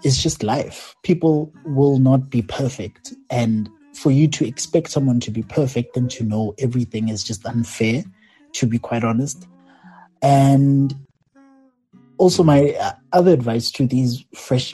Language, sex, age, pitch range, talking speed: English, male, 30-49, 115-150 Hz, 145 wpm